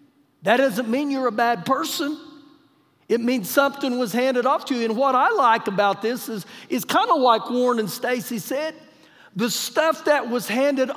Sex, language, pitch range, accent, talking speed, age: male, English, 195-250 Hz, American, 190 wpm, 50-69